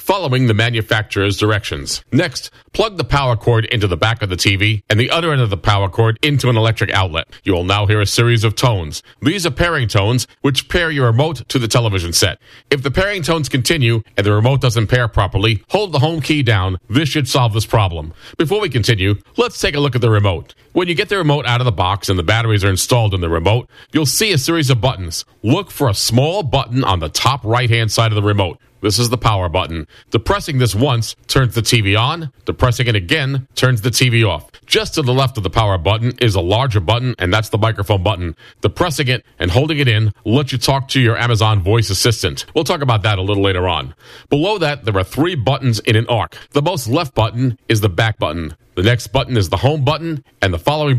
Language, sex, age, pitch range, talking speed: English, male, 40-59, 105-130 Hz, 235 wpm